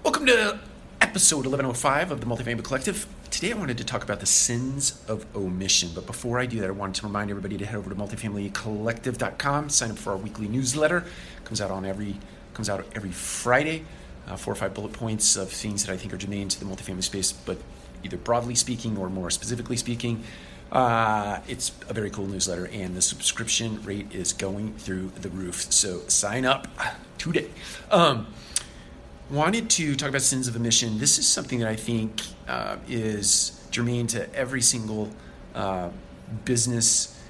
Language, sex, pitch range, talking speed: English, male, 95-120 Hz, 180 wpm